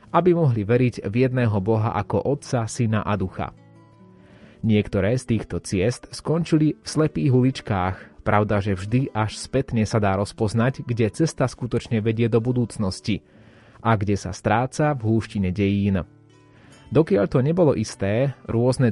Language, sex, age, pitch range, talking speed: Slovak, male, 30-49, 105-125 Hz, 145 wpm